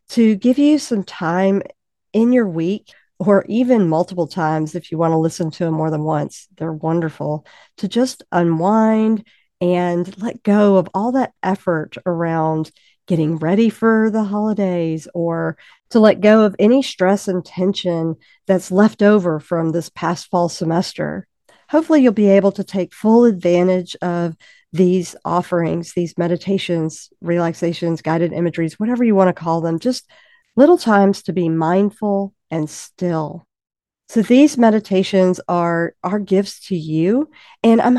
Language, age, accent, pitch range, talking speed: English, 50-69, American, 170-225 Hz, 155 wpm